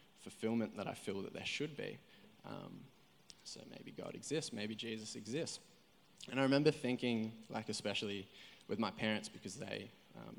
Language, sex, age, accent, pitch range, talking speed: English, male, 20-39, Australian, 105-120 Hz, 160 wpm